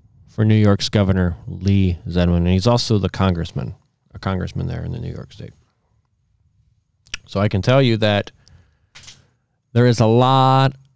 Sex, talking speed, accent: male, 160 wpm, American